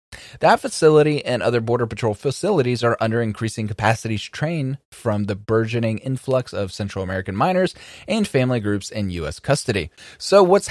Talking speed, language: 155 wpm, English